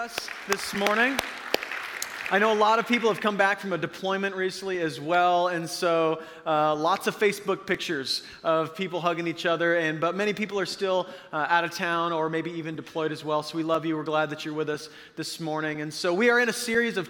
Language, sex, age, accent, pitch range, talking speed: English, male, 30-49, American, 165-195 Hz, 230 wpm